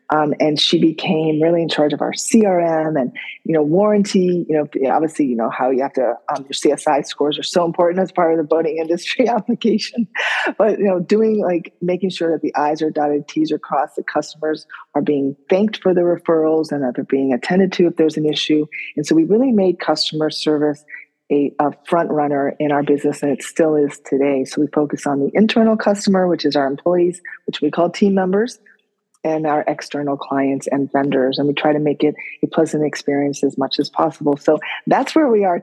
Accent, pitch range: American, 150-185 Hz